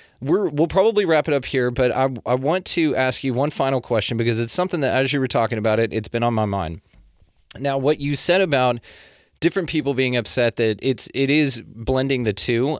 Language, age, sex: English, 20-39, male